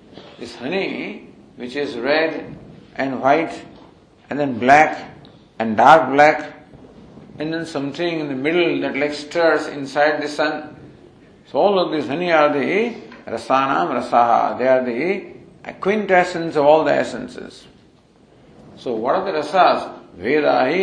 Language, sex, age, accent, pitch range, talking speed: English, male, 50-69, Indian, 140-160 Hz, 140 wpm